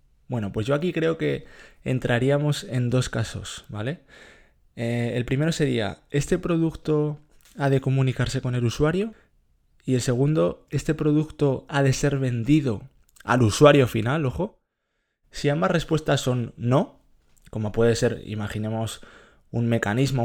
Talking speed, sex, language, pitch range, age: 140 wpm, male, Spanish, 110-140 Hz, 20-39